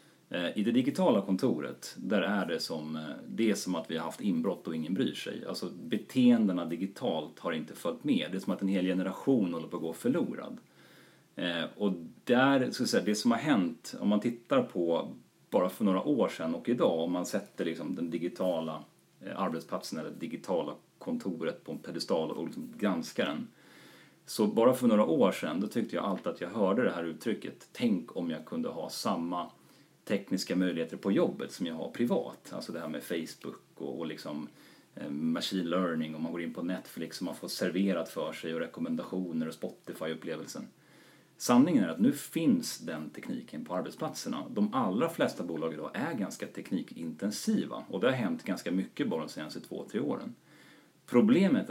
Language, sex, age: Swedish, male, 40-59